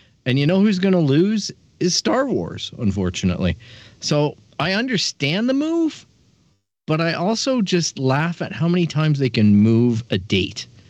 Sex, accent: male, American